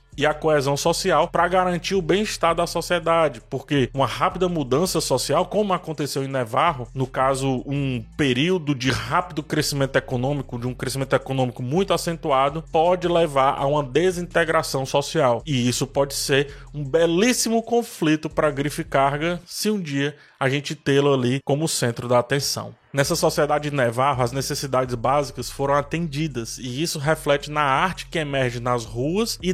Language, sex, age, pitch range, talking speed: Portuguese, male, 20-39, 135-170 Hz, 160 wpm